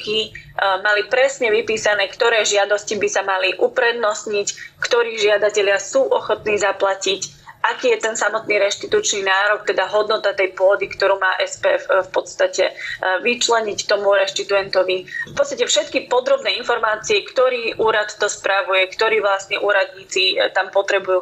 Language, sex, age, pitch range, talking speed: Slovak, female, 20-39, 200-270 Hz, 130 wpm